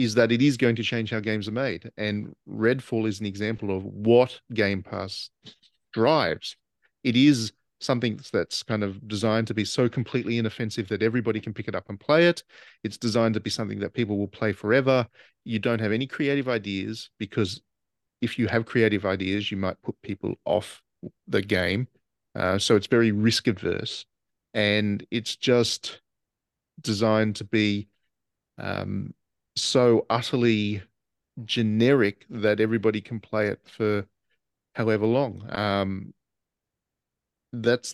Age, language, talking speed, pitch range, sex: 40-59, English, 155 wpm, 100-115 Hz, male